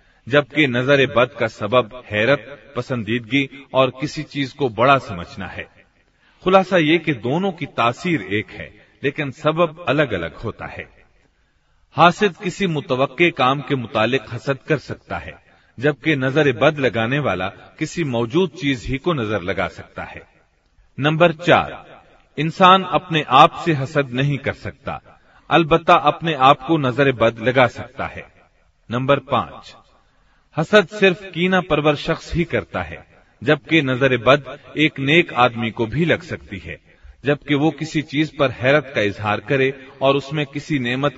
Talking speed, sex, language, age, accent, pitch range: 150 wpm, male, Hindi, 40-59, native, 115-155 Hz